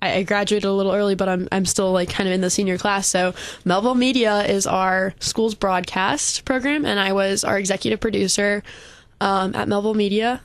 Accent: American